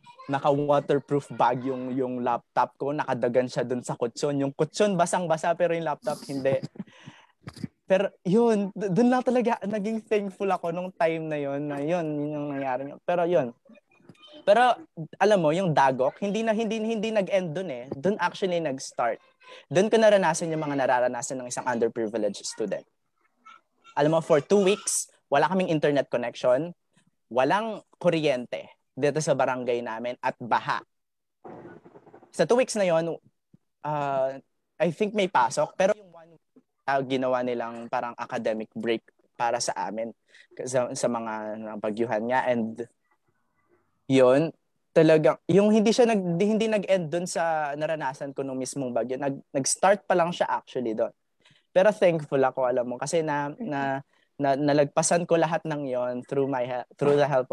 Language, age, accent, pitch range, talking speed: Filipino, 20-39, native, 130-185 Hz, 160 wpm